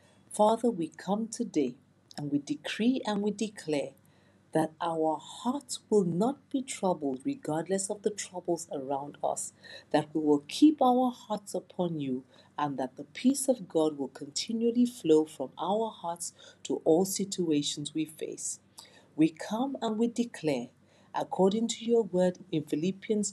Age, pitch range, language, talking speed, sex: 50-69, 150-230 Hz, English, 150 wpm, female